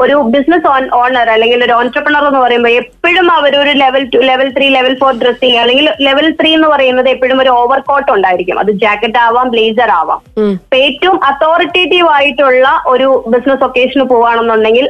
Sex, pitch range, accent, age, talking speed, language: female, 235-285 Hz, native, 20-39, 160 wpm, Malayalam